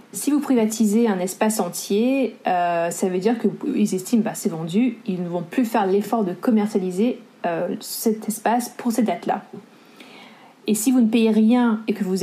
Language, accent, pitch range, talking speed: French, French, 195-235 Hz, 190 wpm